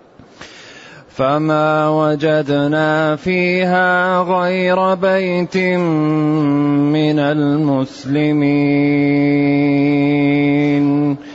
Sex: male